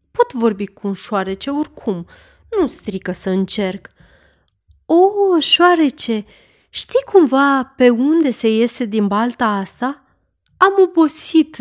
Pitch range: 195-285 Hz